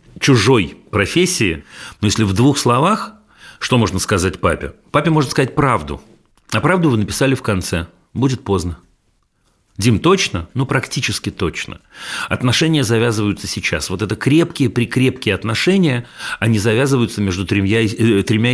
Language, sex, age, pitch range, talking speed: Russian, male, 40-59, 105-135 Hz, 135 wpm